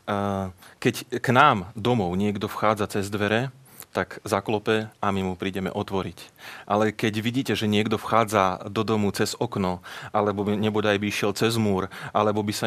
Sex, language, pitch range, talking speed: male, Slovak, 100-110 Hz, 160 wpm